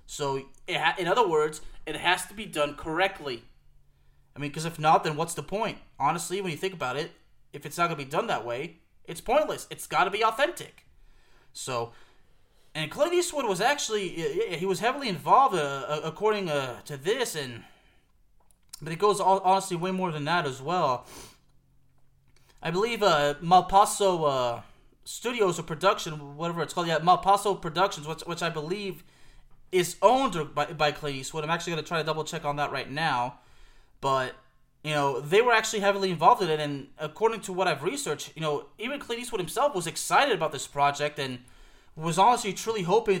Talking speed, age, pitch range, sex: 185 wpm, 30-49, 140-190 Hz, male